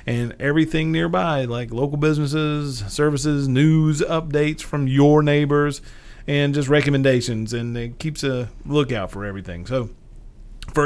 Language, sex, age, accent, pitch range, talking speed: English, male, 40-59, American, 110-140 Hz, 135 wpm